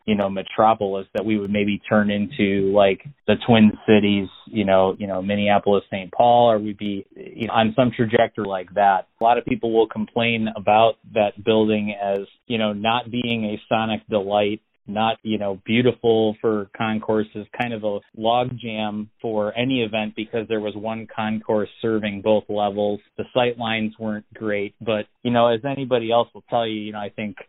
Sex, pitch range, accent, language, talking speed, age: male, 105-115 Hz, American, English, 185 wpm, 30-49